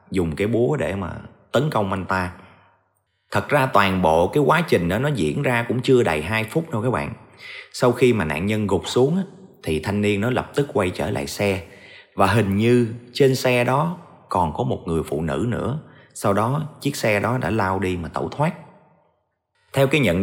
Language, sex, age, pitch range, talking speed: Vietnamese, male, 30-49, 95-135 Hz, 215 wpm